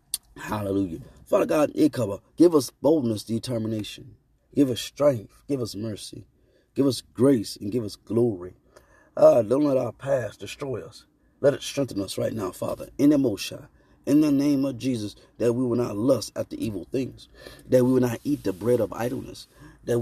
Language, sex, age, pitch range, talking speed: English, male, 30-49, 105-135 Hz, 190 wpm